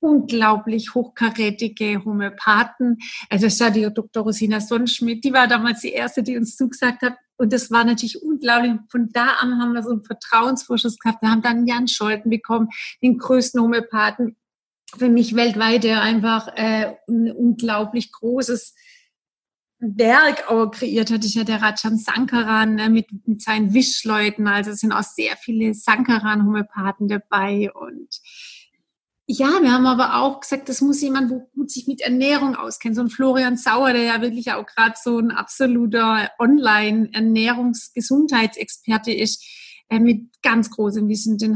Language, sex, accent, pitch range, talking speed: German, female, German, 220-255 Hz, 150 wpm